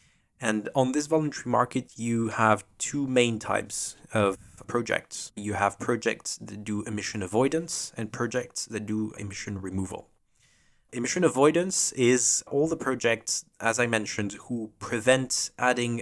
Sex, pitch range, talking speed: male, 105-120 Hz, 140 wpm